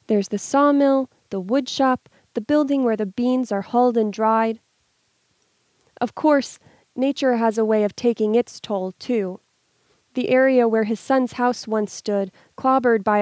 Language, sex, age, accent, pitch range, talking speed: English, female, 30-49, American, 215-260 Hz, 160 wpm